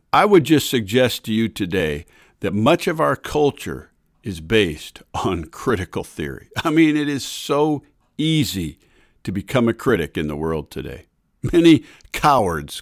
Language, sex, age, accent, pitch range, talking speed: English, male, 50-69, American, 100-130 Hz, 155 wpm